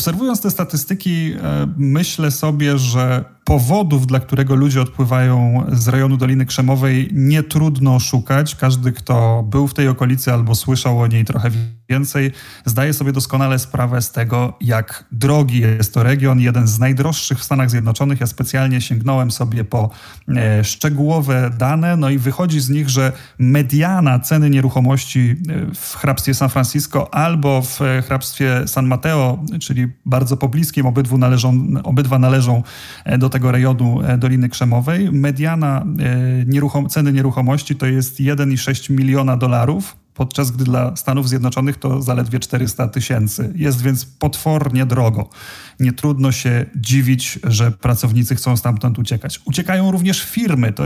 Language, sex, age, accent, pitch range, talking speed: Polish, male, 30-49, native, 125-145 Hz, 140 wpm